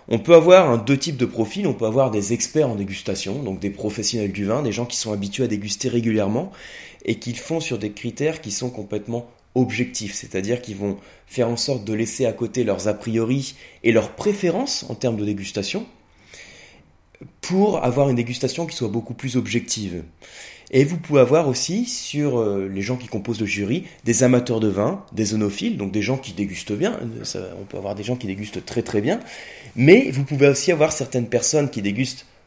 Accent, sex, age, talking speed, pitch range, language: French, male, 20-39, 205 wpm, 110-150 Hz, French